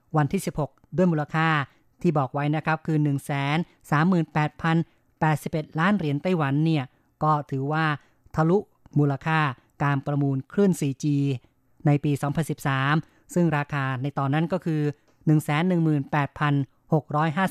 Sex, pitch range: female, 140-165 Hz